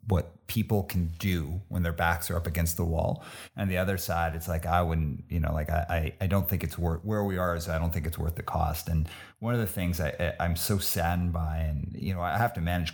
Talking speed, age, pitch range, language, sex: 275 wpm, 30-49, 85-100 Hz, English, male